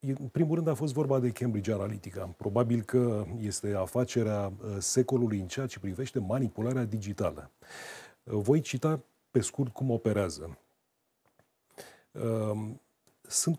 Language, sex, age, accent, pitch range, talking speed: Romanian, male, 30-49, native, 100-130 Hz, 120 wpm